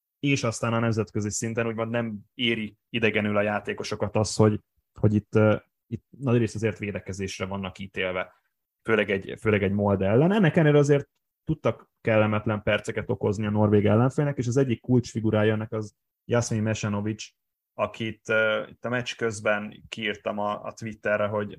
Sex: male